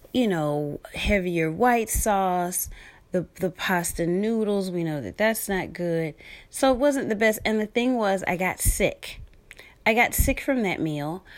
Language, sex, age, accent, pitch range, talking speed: English, female, 30-49, American, 160-210 Hz, 175 wpm